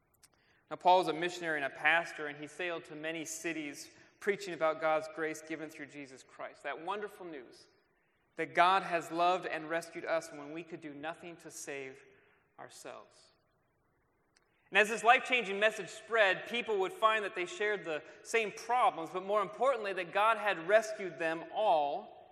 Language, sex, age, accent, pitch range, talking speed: English, male, 30-49, American, 155-215 Hz, 170 wpm